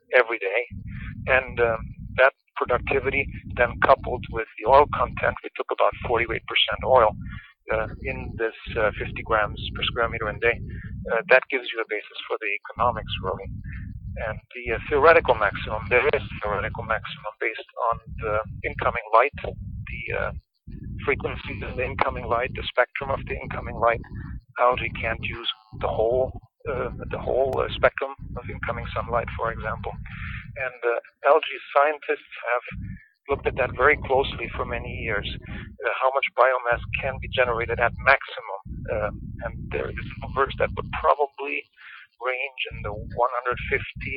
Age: 50-69